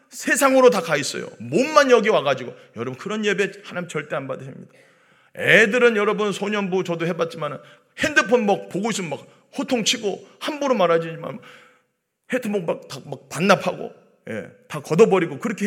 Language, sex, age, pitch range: Korean, male, 40-59, 170-230 Hz